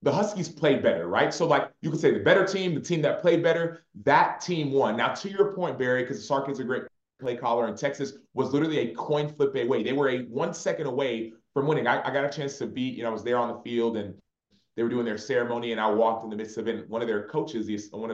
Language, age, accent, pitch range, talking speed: English, 30-49, American, 115-150 Hz, 280 wpm